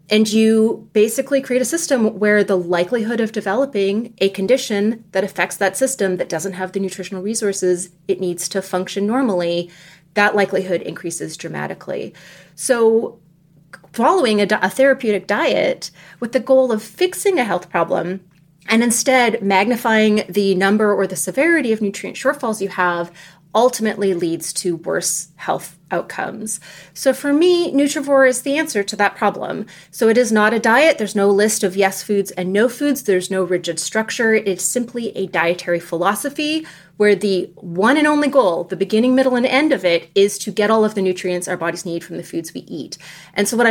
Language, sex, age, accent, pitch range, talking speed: English, female, 30-49, American, 180-235 Hz, 180 wpm